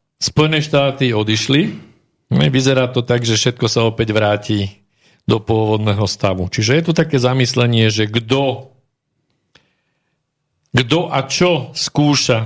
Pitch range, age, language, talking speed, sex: 105-135 Hz, 50-69, Slovak, 120 wpm, male